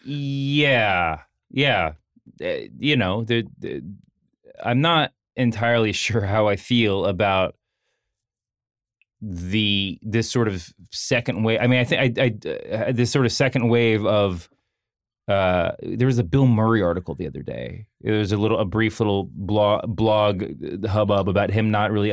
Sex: male